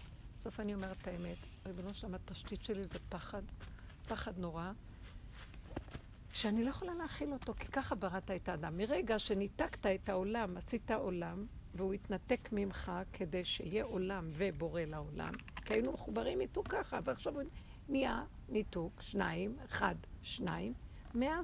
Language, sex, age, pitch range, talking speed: Hebrew, female, 60-79, 190-275 Hz, 135 wpm